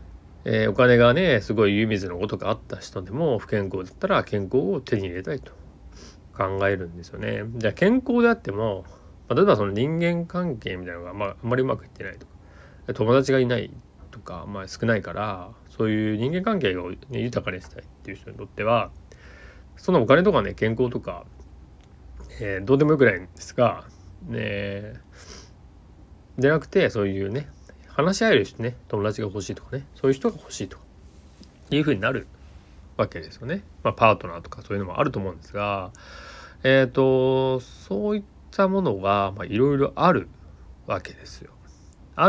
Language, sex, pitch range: Japanese, male, 85-130 Hz